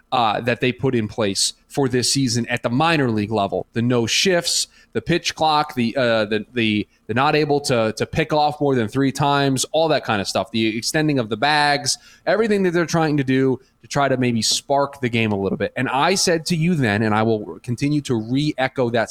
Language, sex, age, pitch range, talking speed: English, male, 20-39, 115-150 Hz, 225 wpm